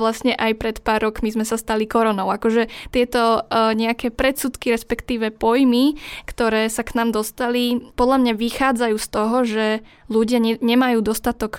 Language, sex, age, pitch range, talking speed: Slovak, female, 10-29, 210-235 Hz, 160 wpm